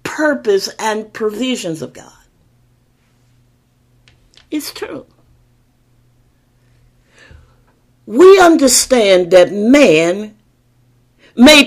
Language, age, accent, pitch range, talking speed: English, 50-69, American, 175-290 Hz, 60 wpm